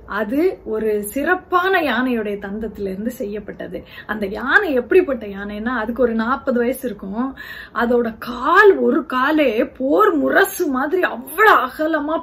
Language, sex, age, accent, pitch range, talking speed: Tamil, female, 30-49, native, 220-315 Hz, 125 wpm